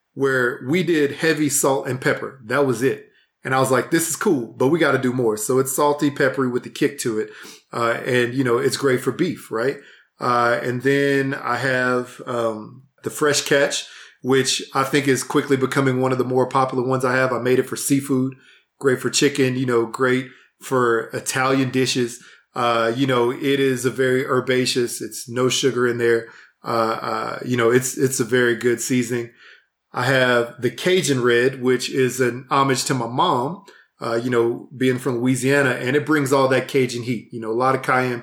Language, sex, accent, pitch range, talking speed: English, male, American, 125-140 Hz, 205 wpm